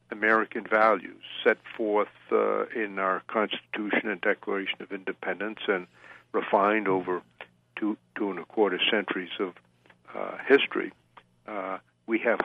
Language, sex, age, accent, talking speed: English, male, 60-79, American, 130 wpm